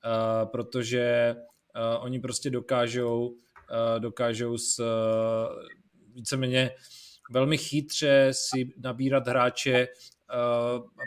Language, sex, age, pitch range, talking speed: Czech, male, 30-49, 125-140 Hz, 100 wpm